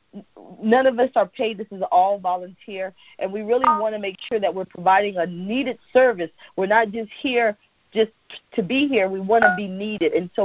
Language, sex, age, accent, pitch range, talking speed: English, female, 40-59, American, 195-260 Hz, 210 wpm